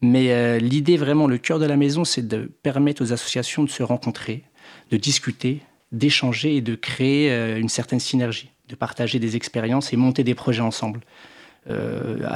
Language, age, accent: French, 40-59, French